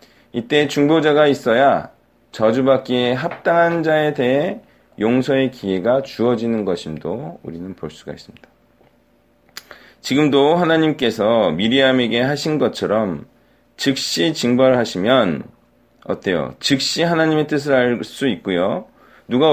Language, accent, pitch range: Korean, native, 115-155 Hz